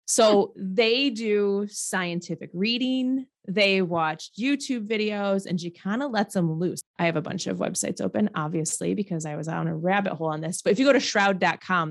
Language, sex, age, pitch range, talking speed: English, female, 20-39, 175-225 Hz, 195 wpm